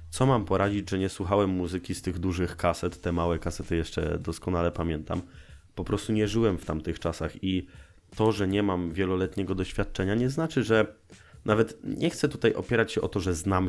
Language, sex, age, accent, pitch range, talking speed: Polish, male, 20-39, native, 90-110 Hz, 195 wpm